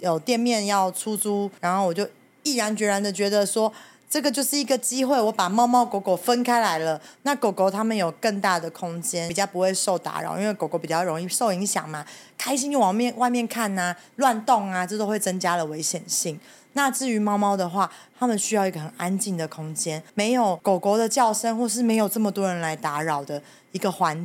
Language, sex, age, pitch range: Chinese, female, 20-39, 175-235 Hz